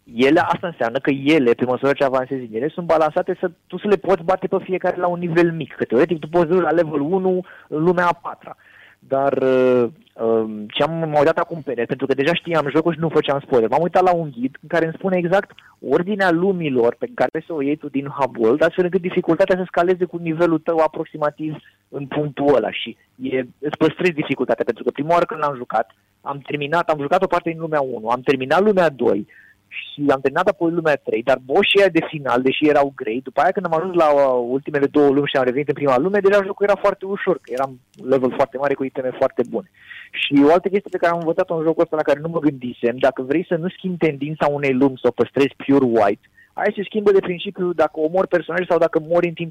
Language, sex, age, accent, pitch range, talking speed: Romanian, male, 30-49, native, 140-180 Hz, 235 wpm